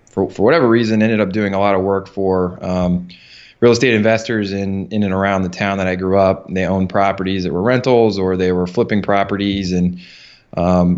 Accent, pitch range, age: American, 90-105 Hz, 20-39